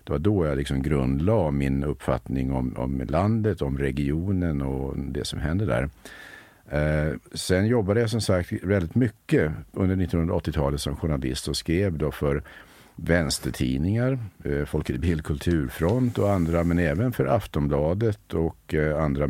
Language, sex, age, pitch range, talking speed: Swedish, male, 50-69, 70-90 Hz, 145 wpm